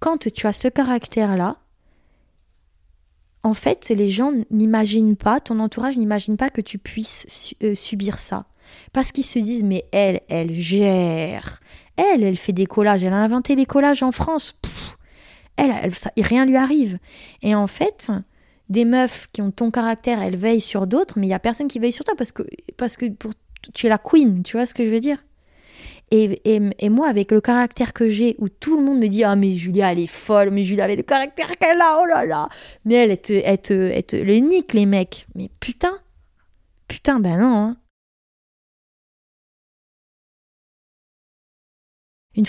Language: French